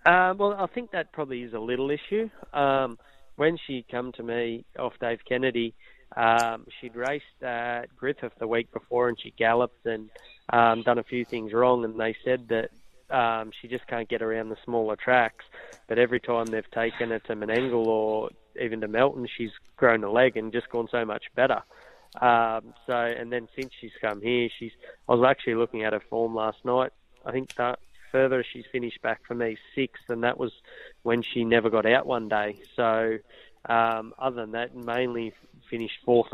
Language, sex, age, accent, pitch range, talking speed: English, male, 20-39, Australian, 115-125 Hz, 190 wpm